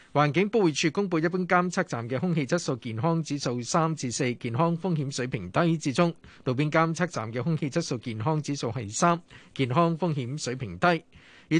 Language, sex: Chinese, male